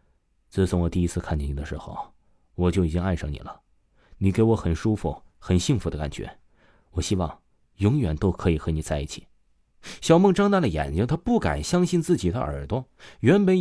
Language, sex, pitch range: Chinese, male, 85-135 Hz